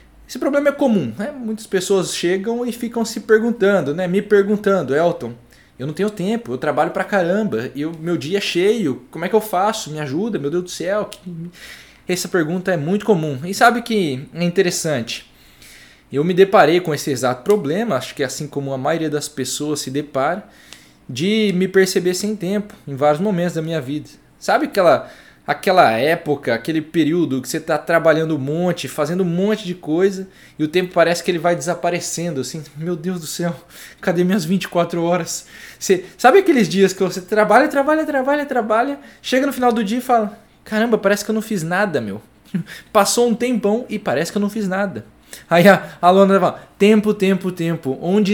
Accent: Brazilian